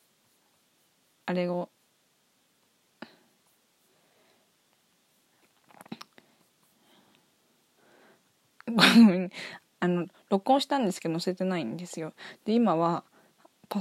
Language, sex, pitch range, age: Japanese, female, 175-220 Hz, 20-39